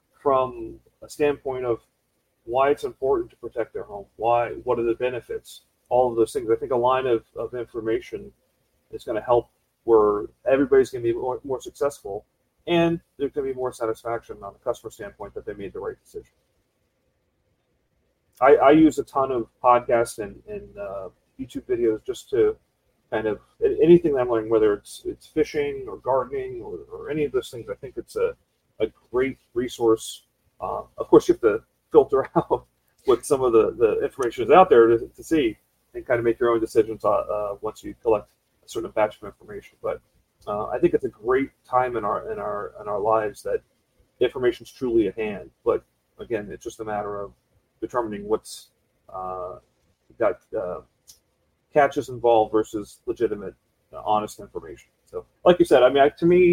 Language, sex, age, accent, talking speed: English, male, 40-59, American, 190 wpm